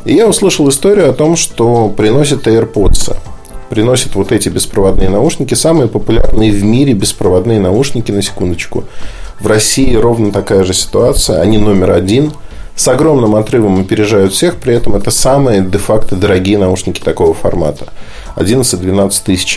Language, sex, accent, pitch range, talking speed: Russian, male, native, 105-140 Hz, 145 wpm